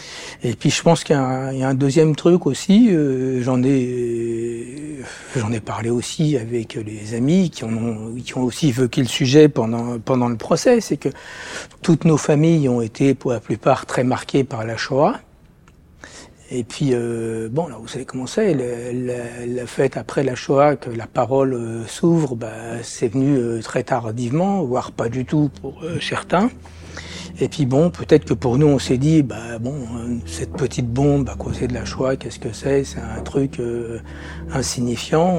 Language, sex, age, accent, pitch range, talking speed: French, male, 60-79, French, 120-140 Hz, 185 wpm